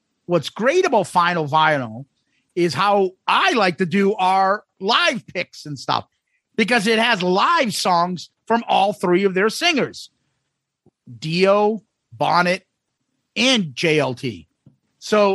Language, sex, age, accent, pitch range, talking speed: English, male, 40-59, American, 145-210 Hz, 125 wpm